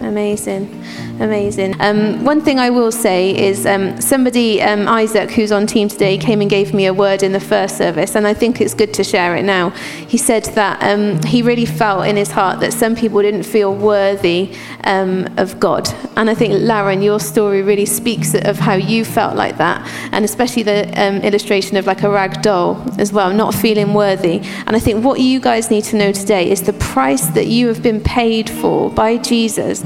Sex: female